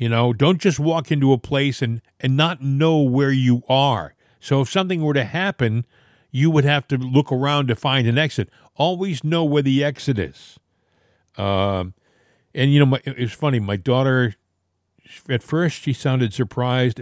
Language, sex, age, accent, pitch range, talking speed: English, male, 50-69, American, 115-150 Hz, 175 wpm